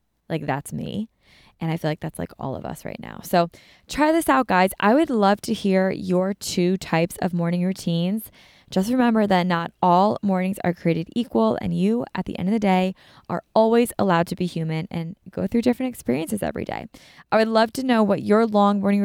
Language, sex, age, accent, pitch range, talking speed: English, female, 20-39, American, 180-210 Hz, 215 wpm